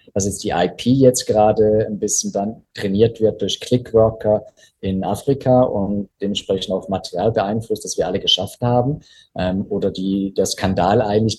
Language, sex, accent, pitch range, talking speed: German, male, German, 105-125 Hz, 165 wpm